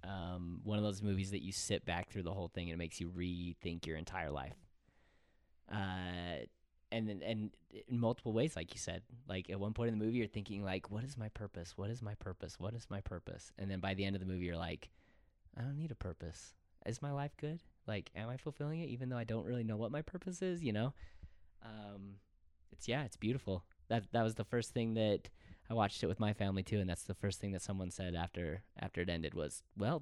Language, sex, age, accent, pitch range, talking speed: English, male, 20-39, American, 95-115 Hz, 245 wpm